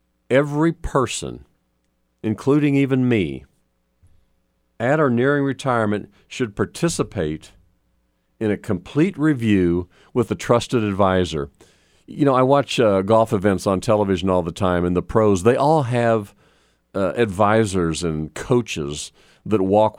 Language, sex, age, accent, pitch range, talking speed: English, male, 50-69, American, 85-120 Hz, 130 wpm